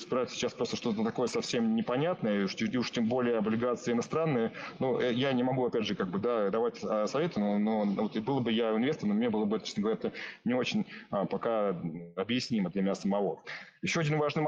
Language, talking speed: Russian, 205 wpm